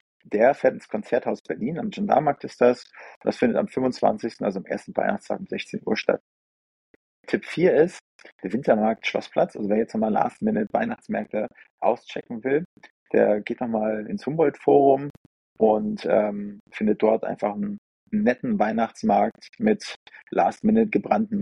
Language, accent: German, German